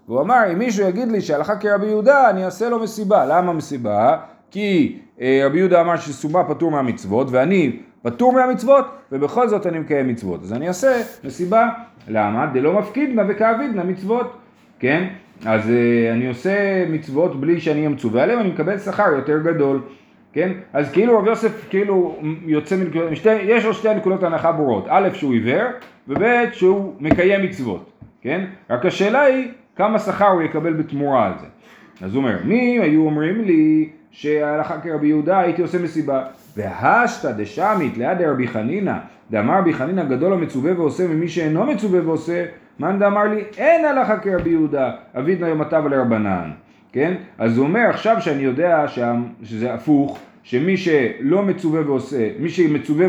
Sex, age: male, 40-59